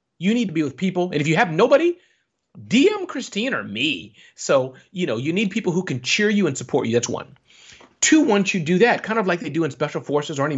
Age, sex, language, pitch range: 30-49, male, English, 145-215 Hz